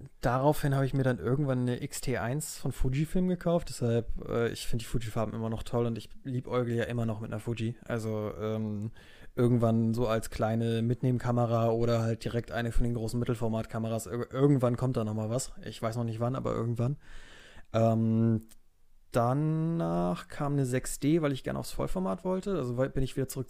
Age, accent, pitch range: 20-39, German, 115-140 Hz